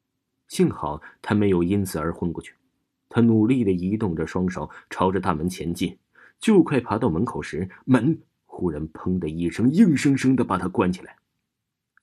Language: Chinese